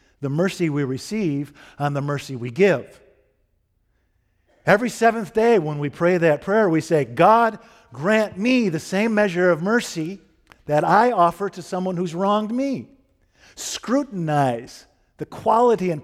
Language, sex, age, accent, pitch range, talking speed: English, male, 50-69, American, 130-180 Hz, 145 wpm